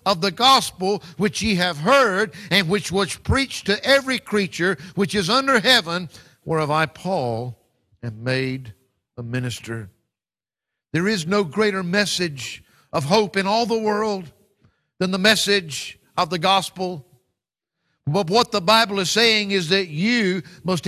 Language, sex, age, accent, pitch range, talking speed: English, male, 50-69, American, 140-205 Hz, 150 wpm